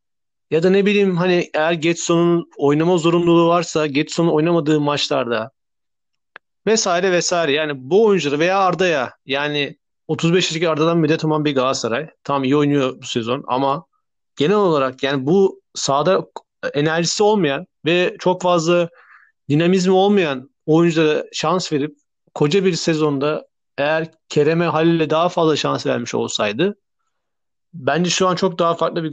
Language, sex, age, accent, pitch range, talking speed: Turkish, male, 40-59, native, 140-175 Hz, 135 wpm